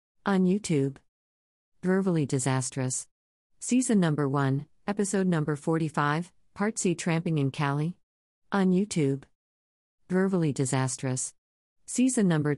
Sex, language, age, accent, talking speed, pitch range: female, English, 40-59, American, 100 wpm, 130-165 Hz